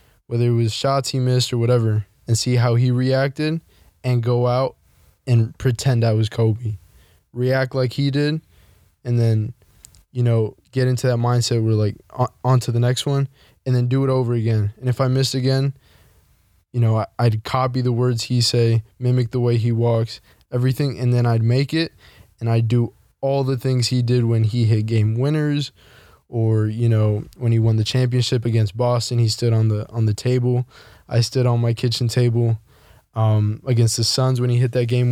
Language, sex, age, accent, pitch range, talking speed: English, male, 20-39, American, 110-125 Hz, 195 wpm